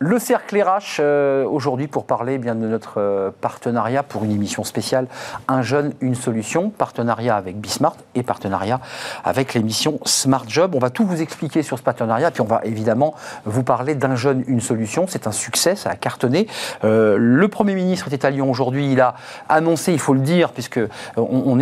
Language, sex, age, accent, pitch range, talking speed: French, male, 40-59, French, 115-150 Hz, 175 wpm